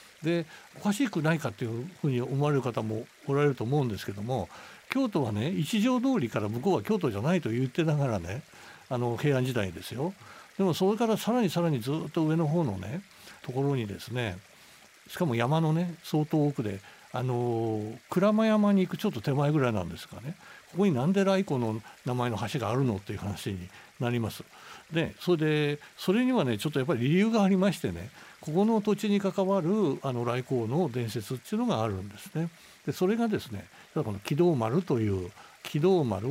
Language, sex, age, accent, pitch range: Japanese, male, 60-79, native, 115-180 Hz